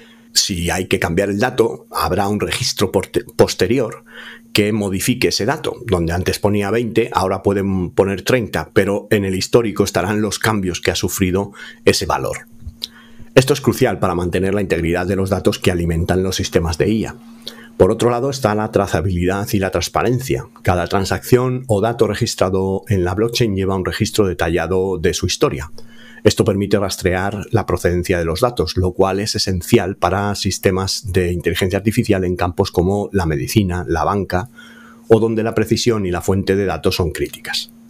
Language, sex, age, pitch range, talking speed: Spanish, male, 40-59, 90-115 Hz, 175 wpm